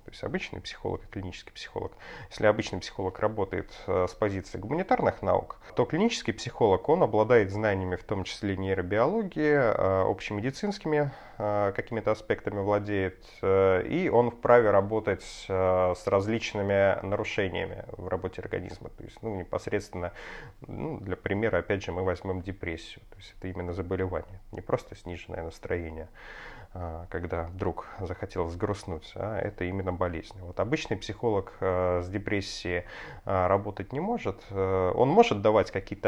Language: Russian